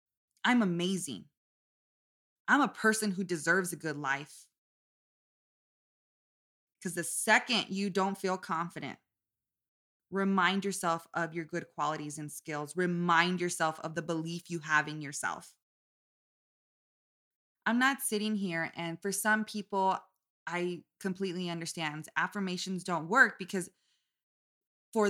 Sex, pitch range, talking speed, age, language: female, 160-195 Hz, 120 wpm, 20-39, English